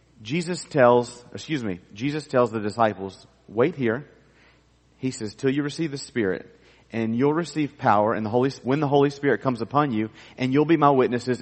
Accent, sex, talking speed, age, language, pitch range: American, male, 190 wpm, 40-59, English, 120-165 Hz